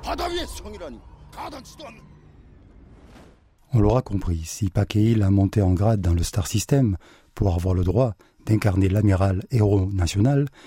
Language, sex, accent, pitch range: French, male, French, 95-125 Hz